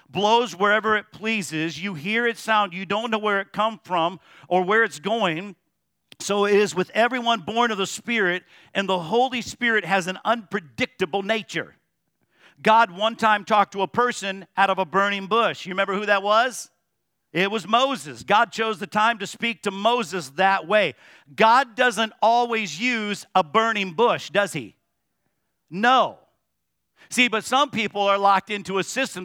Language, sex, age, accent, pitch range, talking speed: English, male, 50-69, American, 185-230 Hz, 175 wpm